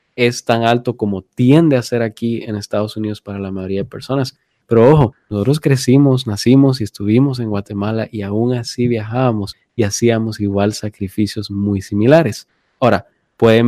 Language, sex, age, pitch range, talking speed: Spanish, male, 20-39, 110-140 Hz, 160 wpm